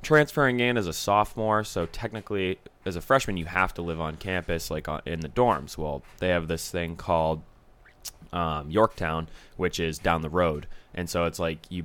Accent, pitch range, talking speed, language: American, 80-95 Hz, 190 wpm, English